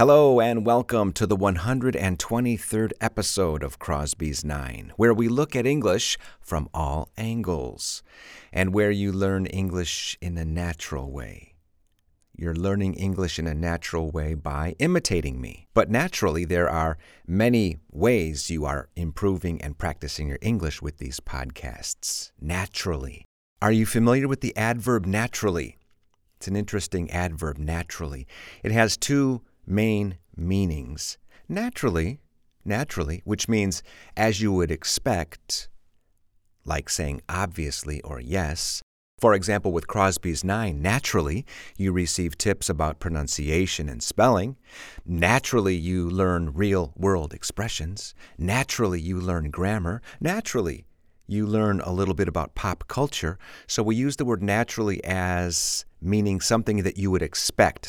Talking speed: 135 wpm